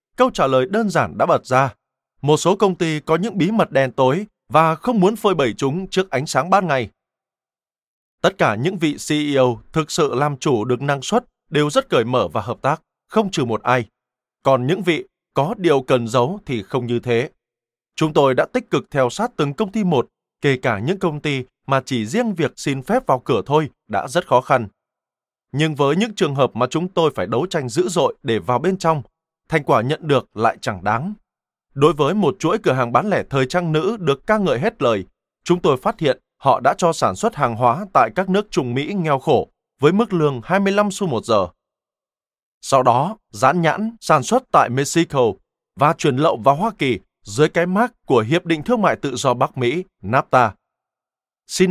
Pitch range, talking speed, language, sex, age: 130-185 Hz, 215 wpm, Vietnamese, male, 20-39